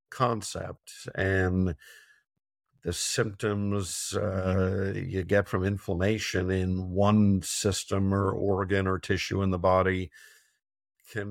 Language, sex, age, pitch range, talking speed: English, male, 50-69, 90-110 Hz, 105 wpm